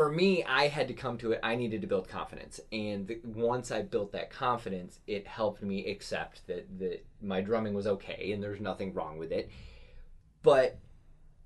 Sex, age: male, 30-49